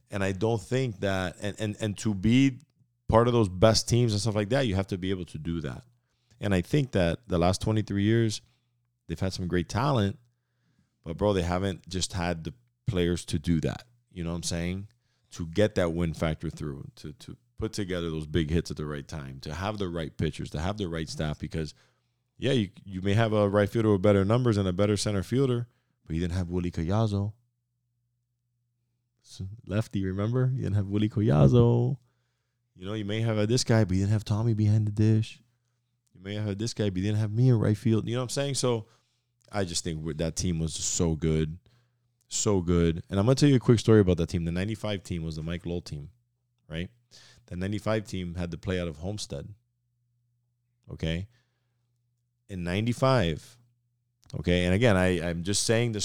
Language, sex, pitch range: English, male, 90-120 Hz